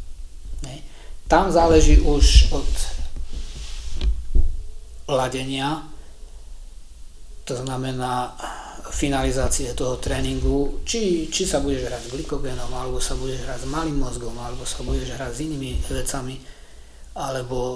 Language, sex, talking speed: Slovak, male, 110 wpm